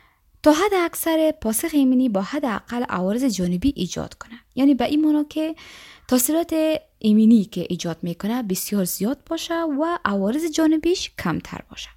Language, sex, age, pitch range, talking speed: Persian, female, 20-39, 195-305 Hz, 140 wpm